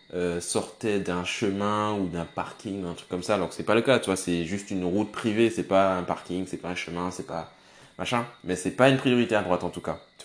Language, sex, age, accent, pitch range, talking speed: French, male, 20-39, French, 90-110 Hz, 265 wpm